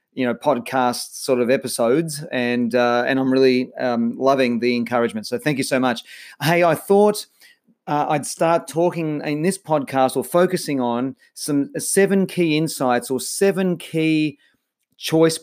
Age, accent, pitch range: 30-49, Australian, 130-165 Hz